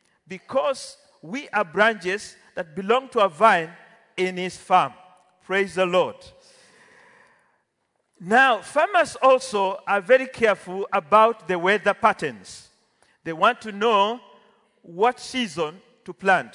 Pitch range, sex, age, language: 180-235 Hz, male, 50-69, English